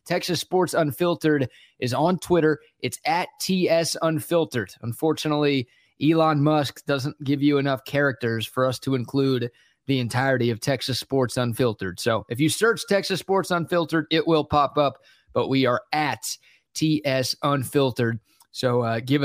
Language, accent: English, American